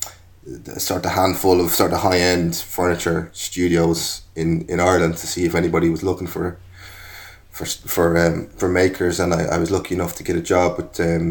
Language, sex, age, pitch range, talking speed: English, male, 20-39, 85-100 Hz, 195 wpm